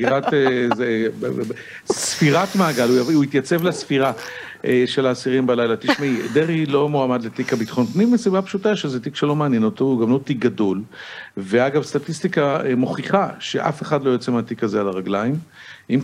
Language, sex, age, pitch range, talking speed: Hebrew, male, 50-69, 115-150 Hz, 145 wpm